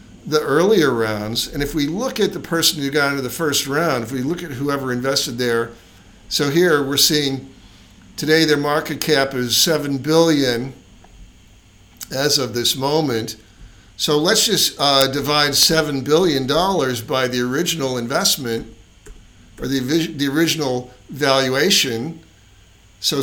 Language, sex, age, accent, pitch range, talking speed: English, male, 60-79, American, 110-150 Hz, 145 wpm